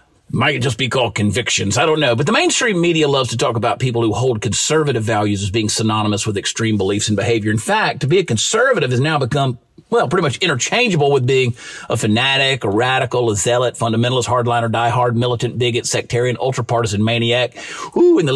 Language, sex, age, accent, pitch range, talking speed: English, male, 40-59, American, 115-155 Hz, 200 wpm